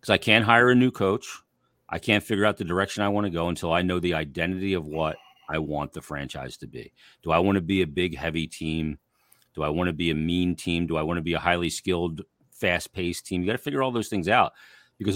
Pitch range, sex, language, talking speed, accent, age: 80-105 Hz, male, English, 260 wpm, American, 40-59